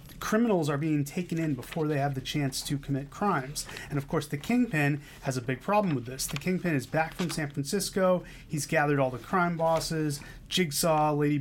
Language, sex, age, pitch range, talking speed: English, male, 30-49, 140-170 Hz, 205 wpm